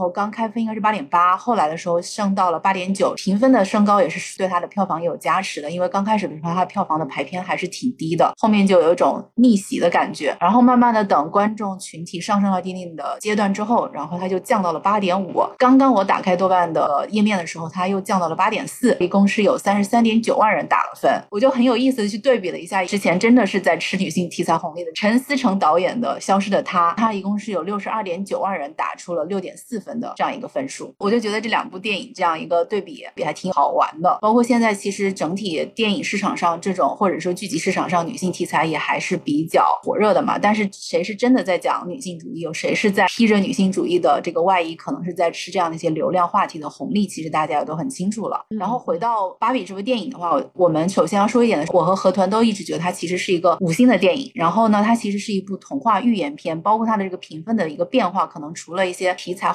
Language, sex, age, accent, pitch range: Chinese, female, 30-49, native, 175-220 Hz